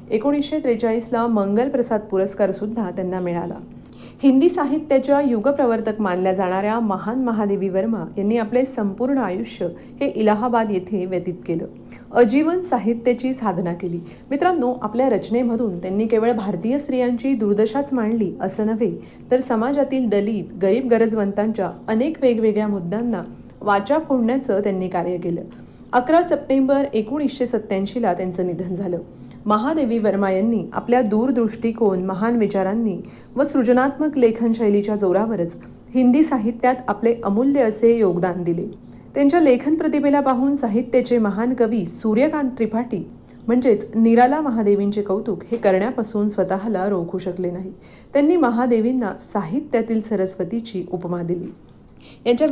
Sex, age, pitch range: female, 40-59, 195-250 Hz